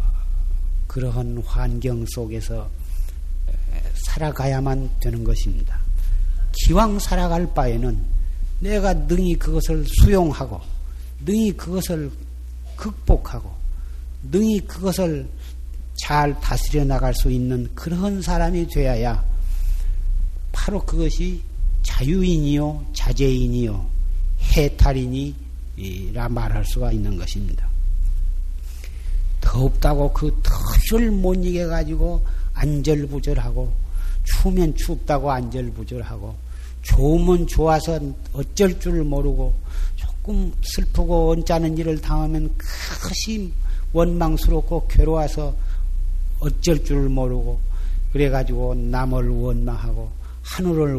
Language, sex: Korean, male